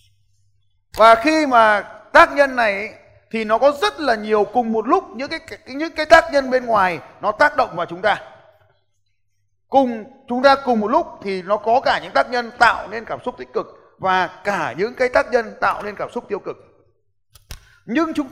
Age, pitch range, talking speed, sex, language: 20-39, 180-265 Hz, 205 wpm, male, Vietnamese